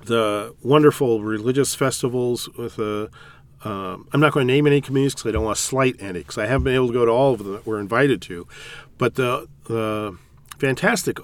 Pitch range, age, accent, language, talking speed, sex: 110-130 Hz, 50-69, American, English, 215 wpm, male